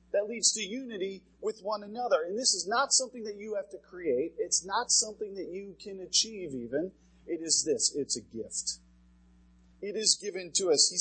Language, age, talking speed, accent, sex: English, 30-49, 200 wpm, American, male